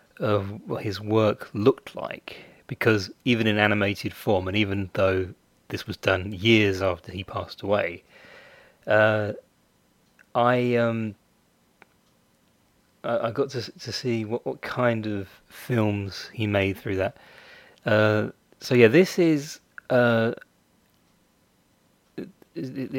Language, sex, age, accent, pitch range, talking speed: English, male, 30-49, British, 95-115 Hz, 120 wpm